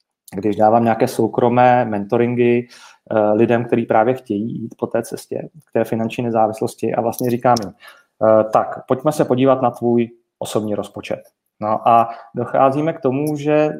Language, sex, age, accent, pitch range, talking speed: Czech, male, 30-49, native, 115-130 Hz, 150 wpm